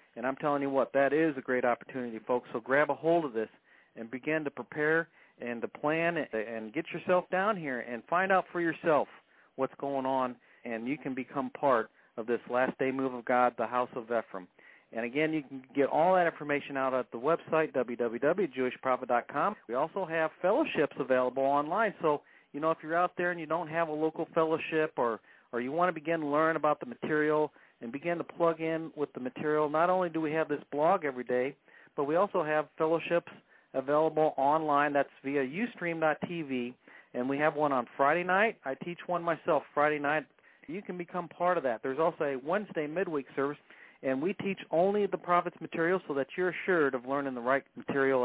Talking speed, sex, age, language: 205 wpm, male, 50-69, English